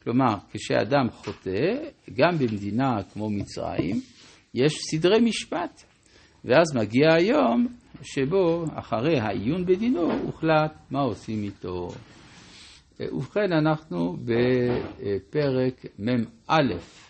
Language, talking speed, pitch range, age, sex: Hebrew, 90 wpm, 105-155 Hz, 60-79, male